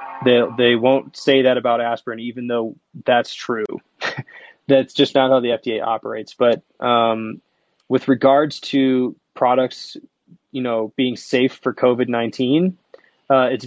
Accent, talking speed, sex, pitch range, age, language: American, 135 wpm, male, 115-130 Hz, 20-39, English